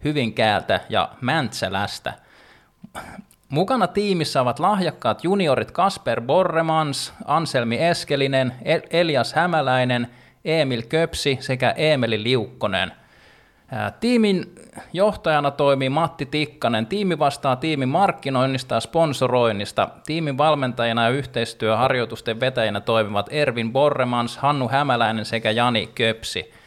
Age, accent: 20-39, native